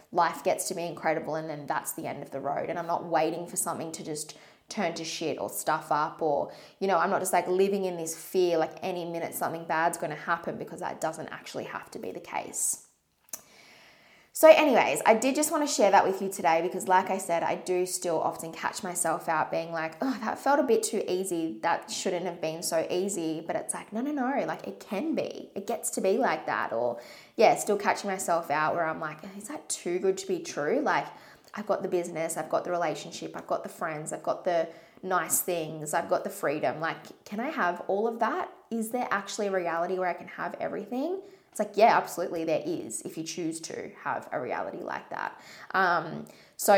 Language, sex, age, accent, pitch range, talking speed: English, female, 20-39, Australian, 165-200 Hz, 230 wpm